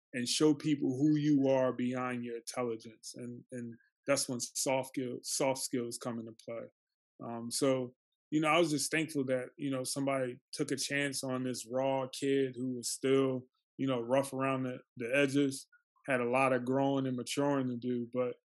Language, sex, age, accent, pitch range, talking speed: English, male, 20-39, American, 120-135 Hz, 190 wpm